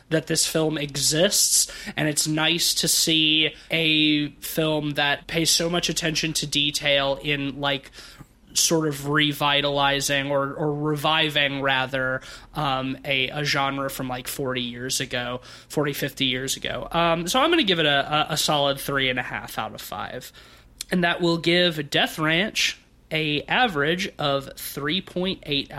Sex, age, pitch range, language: male, 20-39, 145-170 Hz, English